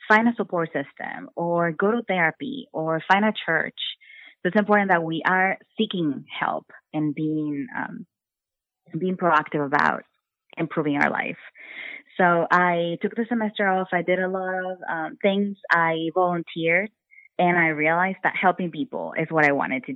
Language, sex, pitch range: English, female, 155-190 Hz